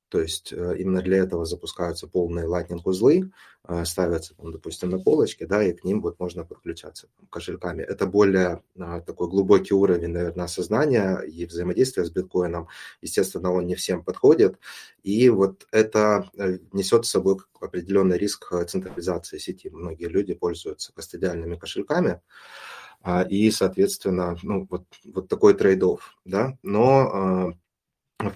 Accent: native